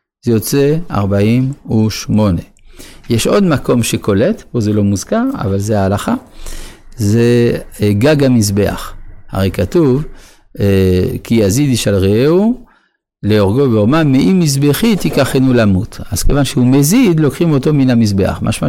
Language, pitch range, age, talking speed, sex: Hebrew, 100-140 Hz, 50-69, 120 wpm, male